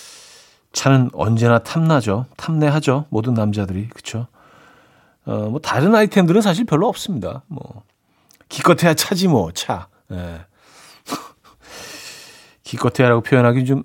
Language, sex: Korean, male